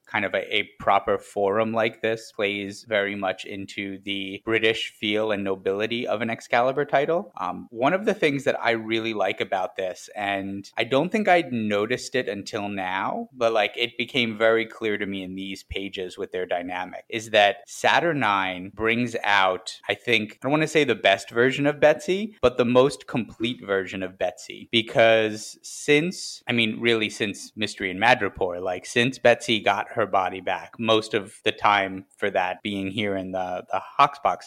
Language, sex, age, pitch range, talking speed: English, male, 30-49, 95-115 Hz, 190 wpm